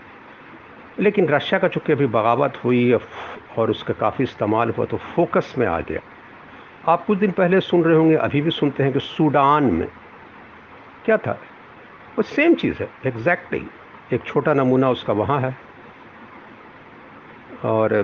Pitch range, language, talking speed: 115-155 Hz, Hindi, 150 wpm